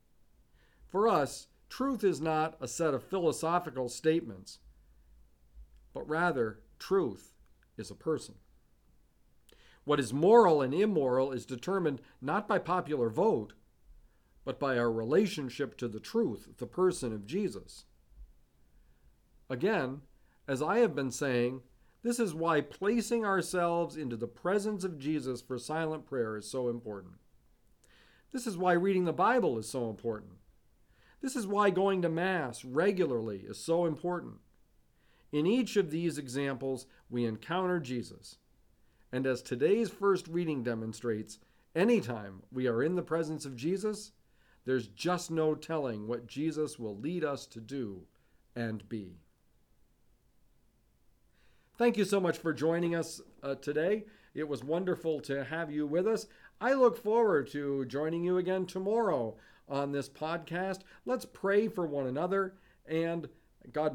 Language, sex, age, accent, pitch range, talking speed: English, male, 50-69, American, 120-180 Hz, 140 wpm